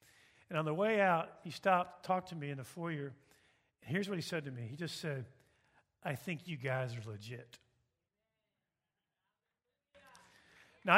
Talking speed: 160 wpm